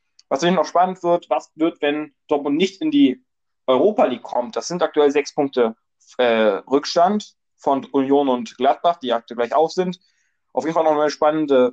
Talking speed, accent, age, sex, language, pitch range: 190 wpm, German, 20-39, male, German, 135-165 Hz